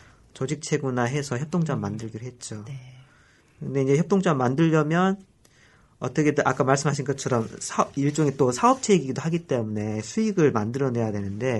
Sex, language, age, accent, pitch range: male, Korean, 40-59, native, 115-155 Hz